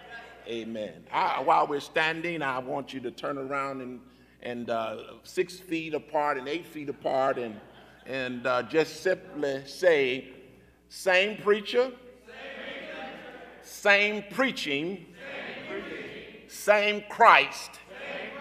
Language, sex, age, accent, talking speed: English, male, 50-69, American, 110 wpm